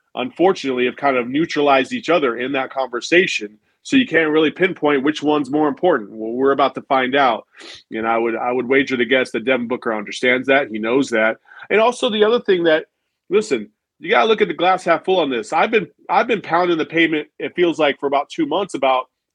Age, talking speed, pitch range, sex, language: 40-59, 225 wpm, 130-175 Hz, male, English